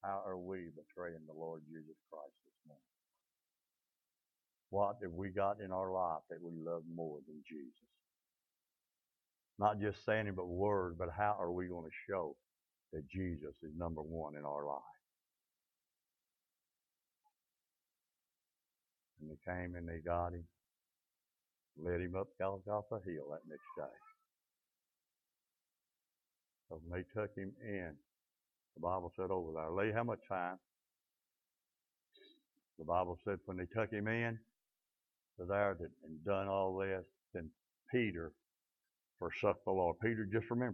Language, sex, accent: English, male, American